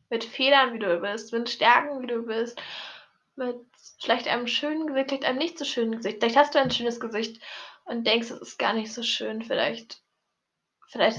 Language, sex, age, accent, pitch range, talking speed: German, female, 10-29, German, 225-260 Hz, 200 wpm